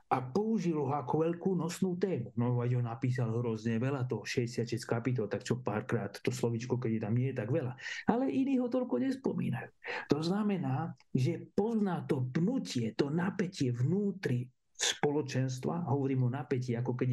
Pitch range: 125-175 Hz